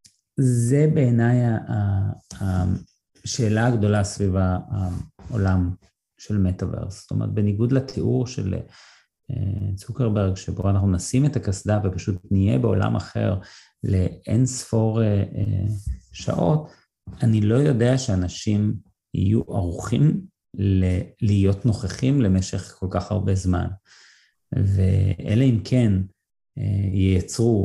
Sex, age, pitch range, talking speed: male, 30-49, 95-120 Hz, 95 wpm